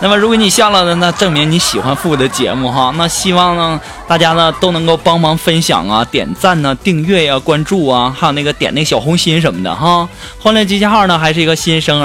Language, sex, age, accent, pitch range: Chinese, male, 20-39, native, 155-200 Hz